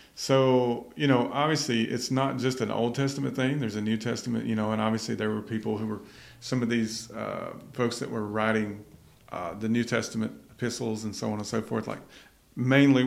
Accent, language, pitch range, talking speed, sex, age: American, English, 105-120 Hz, 205 wpm, male, 40-59